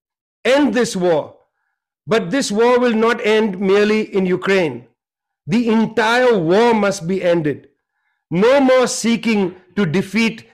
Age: 50-69